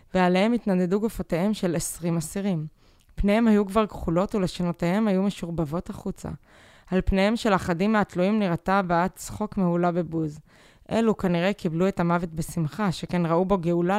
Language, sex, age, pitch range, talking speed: Hebrew, female, 20-39, 165-205 Hz, 145 wpm